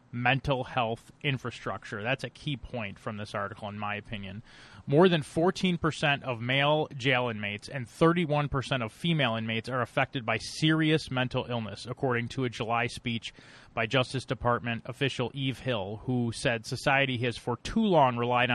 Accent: American